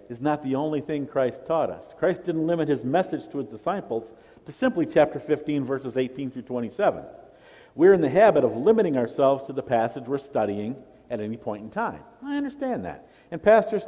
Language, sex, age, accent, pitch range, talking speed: English, male, 50-69, American, 140-205 Hz, 200 wpm